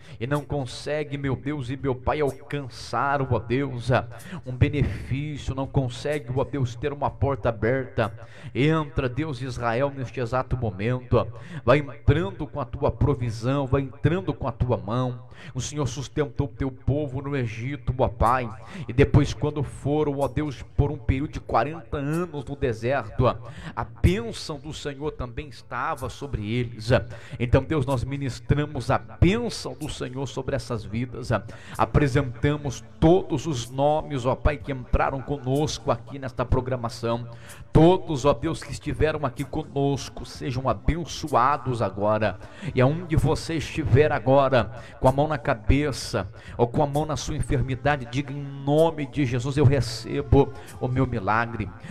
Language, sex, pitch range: Portuguese, male, 120-145 Hz